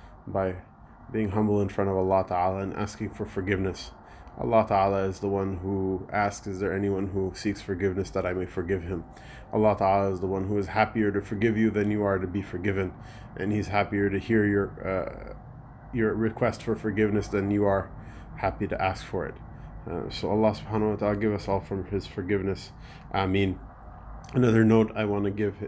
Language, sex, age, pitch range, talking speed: English, male, 20-39, 95-105 Hz, 200 wpm